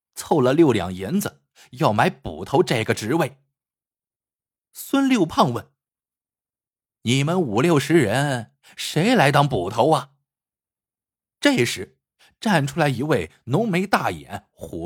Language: Chinese